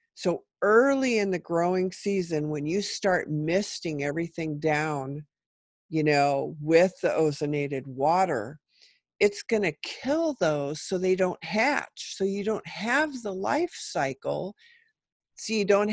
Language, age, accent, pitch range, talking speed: English, 50-69, American, 155-220 Hz, 135 wpm